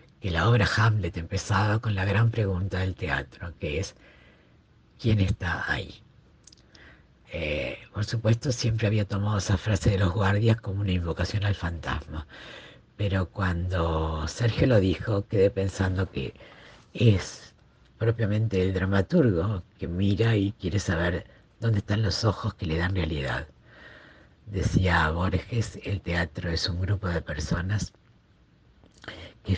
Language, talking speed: Spanish, 135 wpm